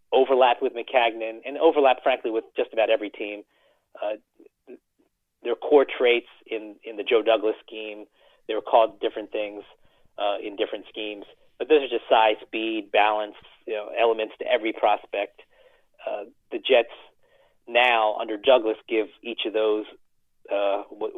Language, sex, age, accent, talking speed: English, male, 30-49, American, 145 wpm